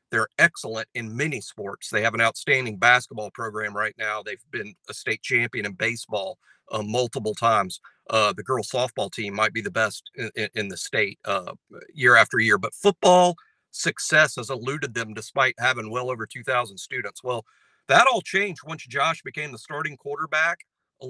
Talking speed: 180 wpm